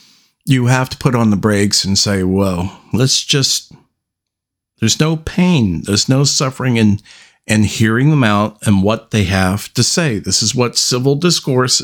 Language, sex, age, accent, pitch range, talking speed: English, male, 50-69, American, 105-135 Hz, 170 wpm